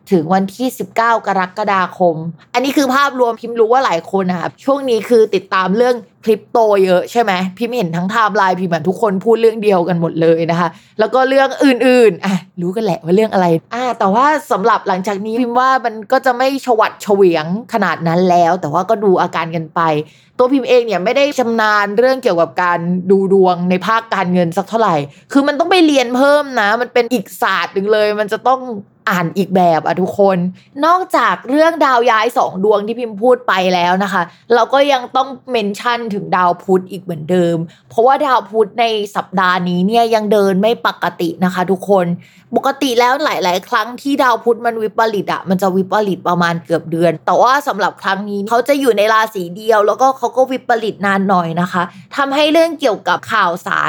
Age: 20-39